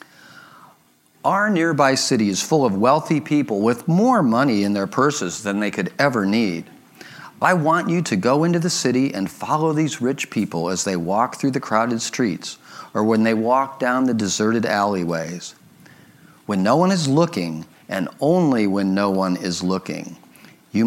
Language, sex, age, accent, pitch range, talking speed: English, male, 40-59, American, 110-180 Hz, 175 wpm